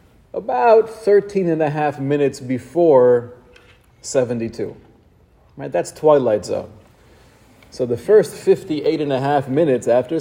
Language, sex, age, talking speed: English, male, 30-49, 125 wpm